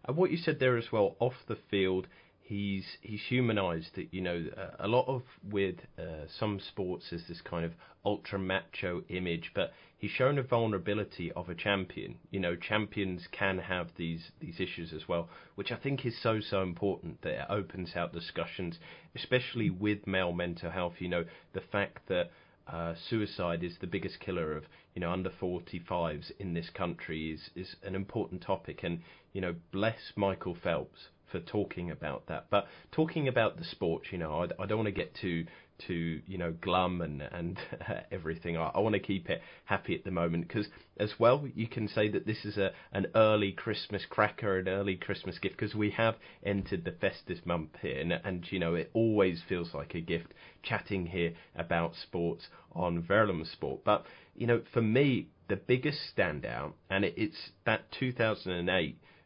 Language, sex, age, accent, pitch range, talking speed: English, male, 30-49, British, 85-110 Hz, 190 wpm